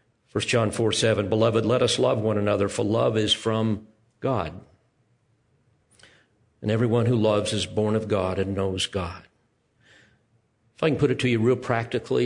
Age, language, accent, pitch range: 50-69, English, American, 105-120 Hz